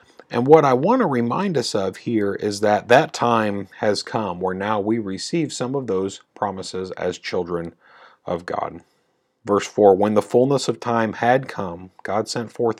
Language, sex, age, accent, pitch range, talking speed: English, male, 40-59, American, 95-125 Hz, 185 wpm